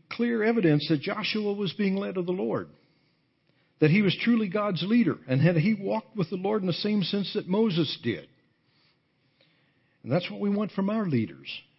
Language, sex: English, male